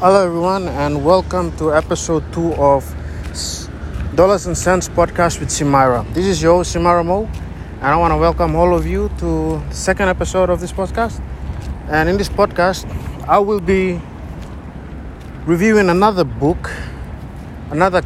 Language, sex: English, male